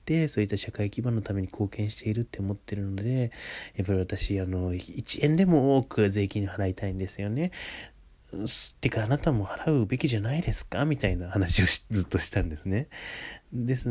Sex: male